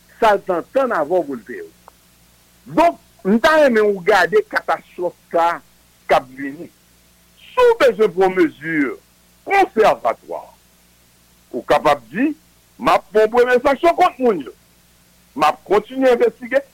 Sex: male